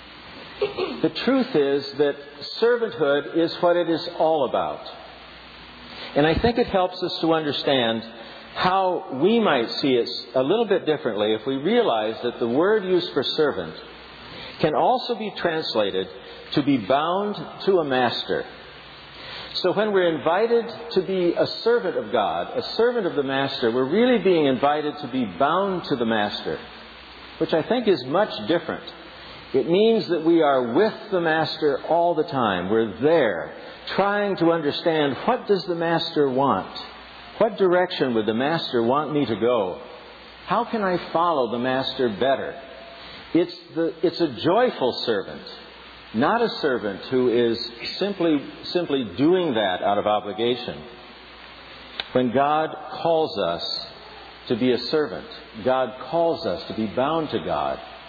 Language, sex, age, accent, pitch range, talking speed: English, male, 60-79, American, 135-185 Hz, 155 wpm